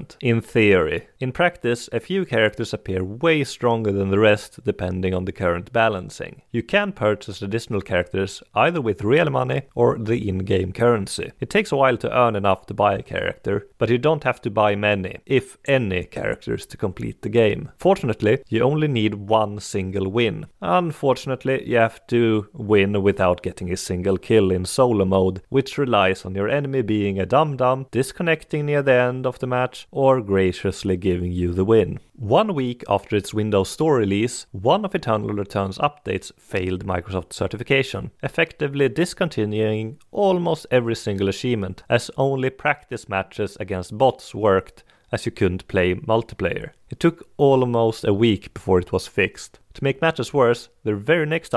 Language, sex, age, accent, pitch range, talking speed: English, male, 30-49, Swedish, 100-130 Hz, 170 wpm